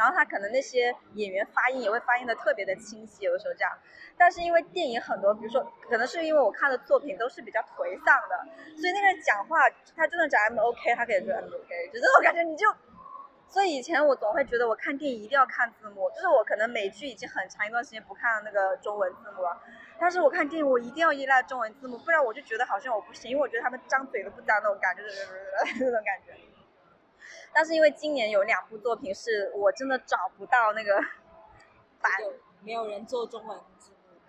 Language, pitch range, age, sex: Chinese, 220-305 Hz, 20-39, female